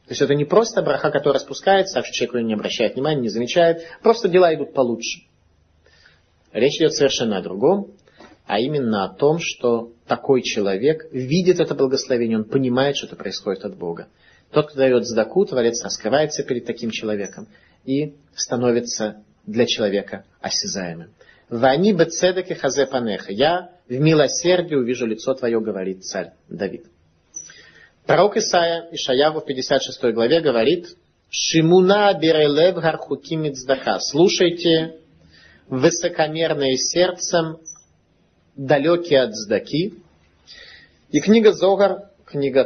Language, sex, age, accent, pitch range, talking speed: Russian, male, 30-49, native, 120-165 Hz, 125 wpm